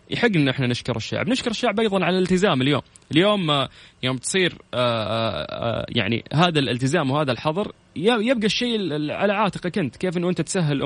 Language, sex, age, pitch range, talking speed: Arabic, male, 20-39, 120-175 Hz, 155 wpm